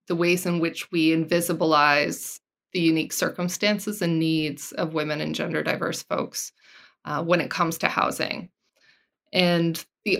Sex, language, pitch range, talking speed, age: female, English, 165-185 Hz, 145 wpm, 20-39